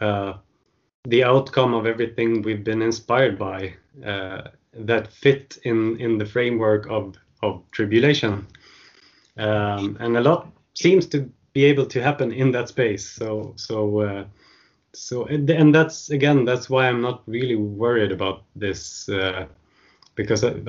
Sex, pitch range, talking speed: male, 100-125 Hz, 140 wpm